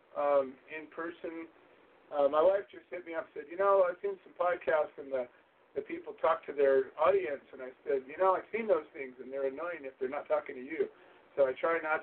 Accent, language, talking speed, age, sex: American, English, 240 wpm, 50-69, male